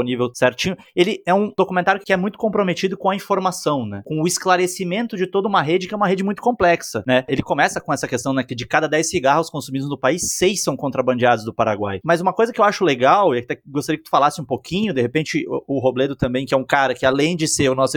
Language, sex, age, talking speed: Portuguese, male, 20-39, 255 wpm